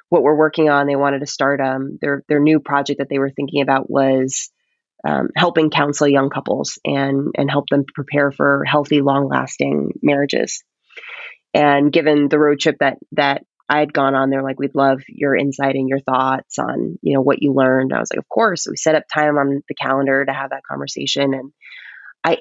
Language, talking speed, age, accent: English, 210 wpm, 20-39, American